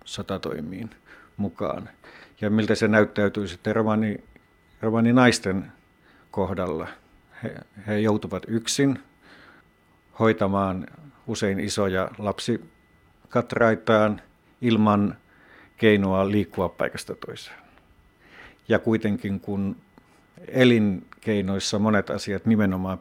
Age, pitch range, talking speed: 50-69, 95-110 Hz, 80 wpm